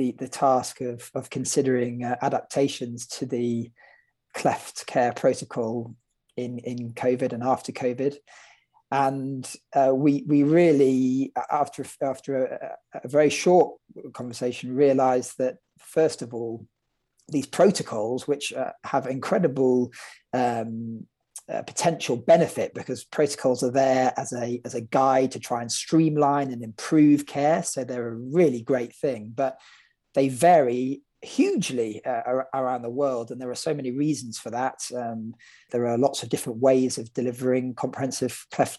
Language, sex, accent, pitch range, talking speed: English, male, British, 120-145 Hz, 145 wpm